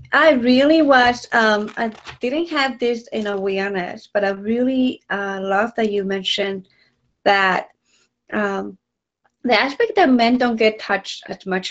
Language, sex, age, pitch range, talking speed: English, female, 30-49, 200-240 Hz, 160 wpm